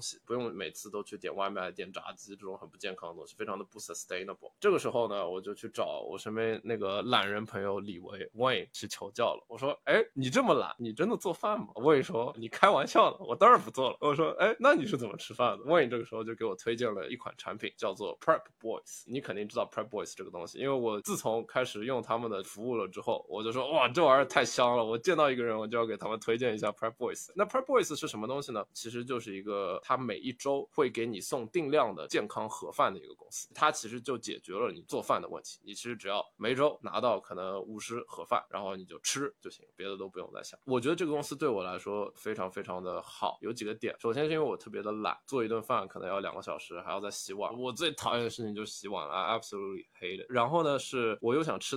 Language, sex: Chinese, male